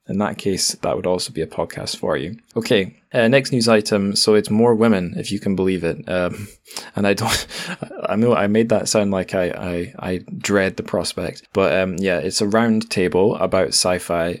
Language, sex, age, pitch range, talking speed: English, male, 20-39, 90-110 Hz, 210 wpm